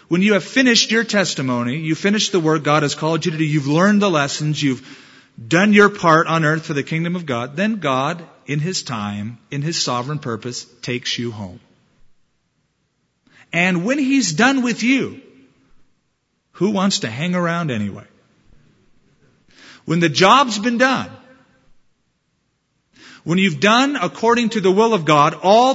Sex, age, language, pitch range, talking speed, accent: male, 40-59, English, 135-190 Hz, 165 wpm, American